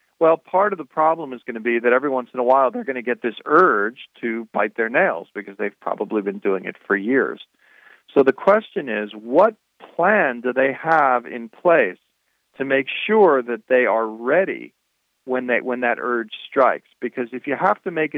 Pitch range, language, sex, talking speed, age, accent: 110-135 Hz, English, male, 210 wpm, 40-59, American